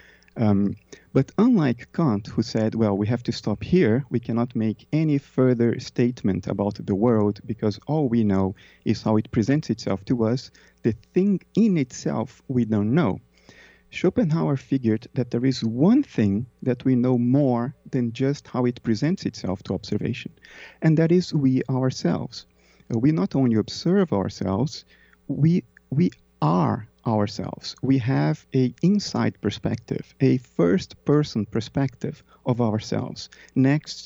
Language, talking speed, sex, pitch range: English, 150 wpm, male, 110-140 Hz